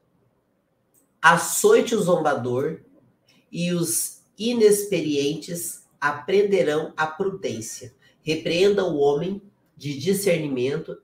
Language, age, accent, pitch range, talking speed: Portuguese, 40-59, Brazilian, 140-175 Hz, 75 wpm